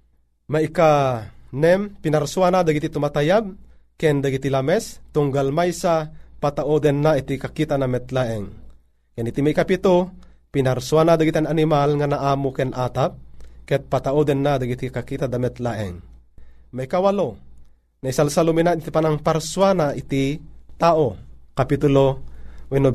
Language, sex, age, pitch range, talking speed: Filipino, male, 30-49, 100-160 Hz, 120 wpm